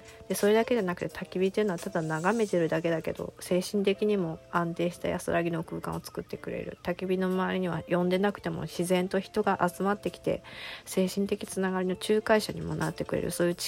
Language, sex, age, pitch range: Japanese, female, 20-39, 165-185 Hz